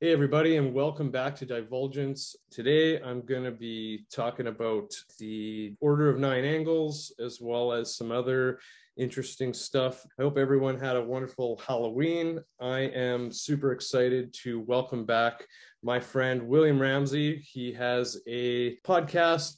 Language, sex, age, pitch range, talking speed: English, male, 30-49, 120-140 Hz, 145 wpm